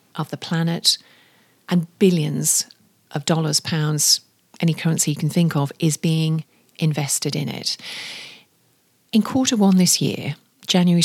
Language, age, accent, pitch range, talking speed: English, 40-59, British, 160-210 Hz, 135 wpm